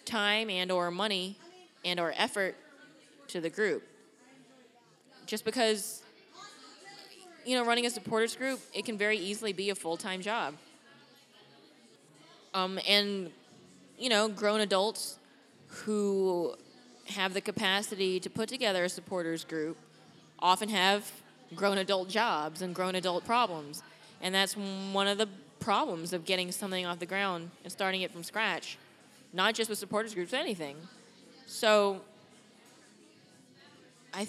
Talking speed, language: 135 wpm, English